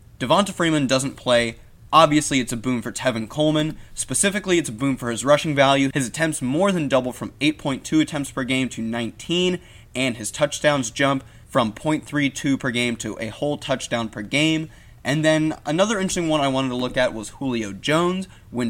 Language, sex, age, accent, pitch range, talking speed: English, male, 20-39, American, 115-155 Hz, 190 wpm